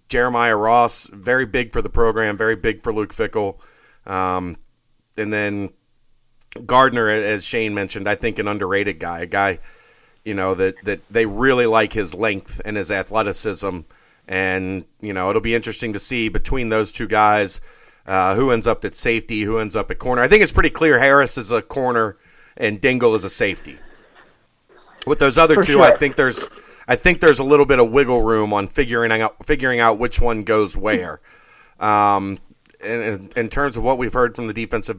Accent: American